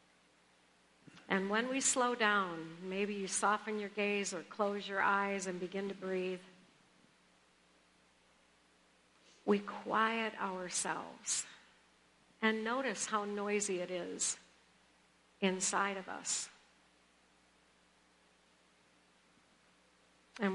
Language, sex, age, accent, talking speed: English, female, 60-79, American, 90 wpm